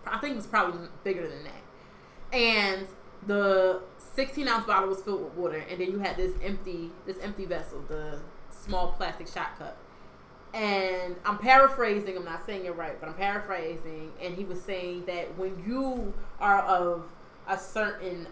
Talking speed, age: 170 wpm, 20-39